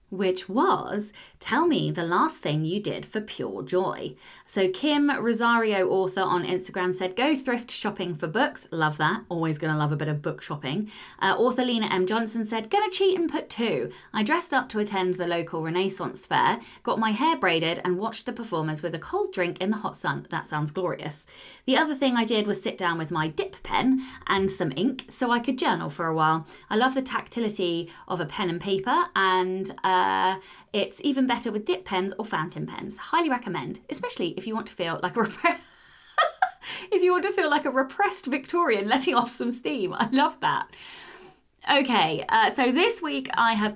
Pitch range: 180-270 Hz